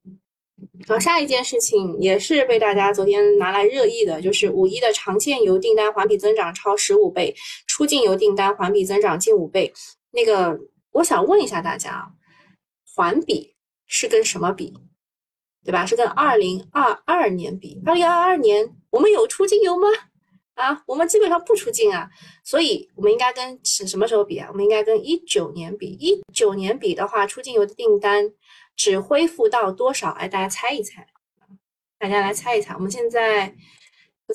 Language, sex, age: Chinese, female, 20-39